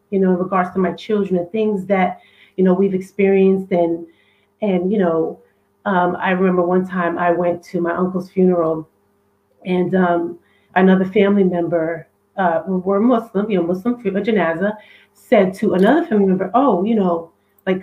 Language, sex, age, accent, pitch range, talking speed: English, female, 30-49, American, 180-225 Hz, 170 wpm